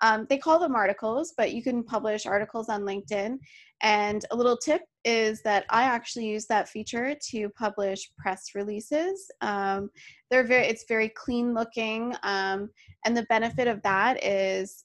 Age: 20-39